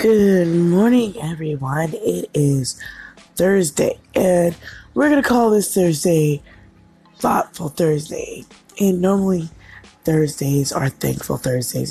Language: English